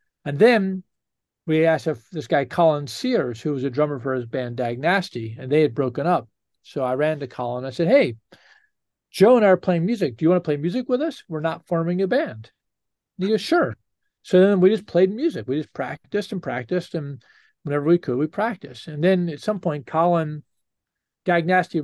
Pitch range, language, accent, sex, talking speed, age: 145-195 Hz, English, American, male, 210 wpm, 40-59